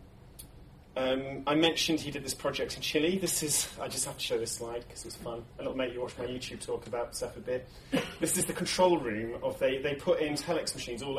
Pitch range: 120-165 Hz